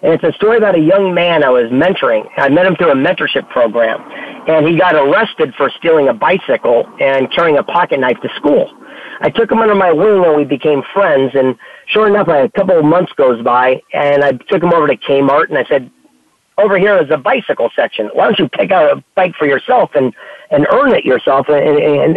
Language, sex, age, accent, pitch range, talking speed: English, male, 40-59, American, 145-215 Hz, 225 wpm